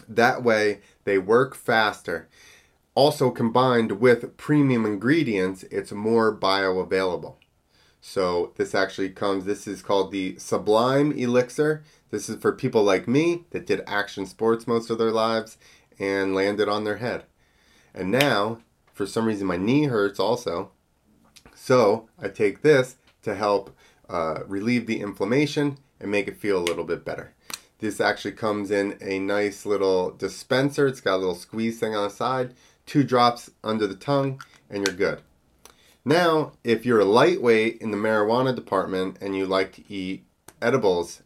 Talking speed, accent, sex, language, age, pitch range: 160 wpm, American, male, English, 30-49, 95-130 Hz